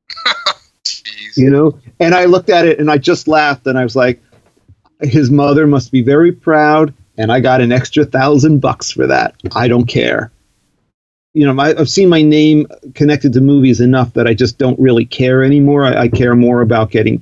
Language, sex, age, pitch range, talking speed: English, male, 40-59, 120-145 Hz, 200 wpm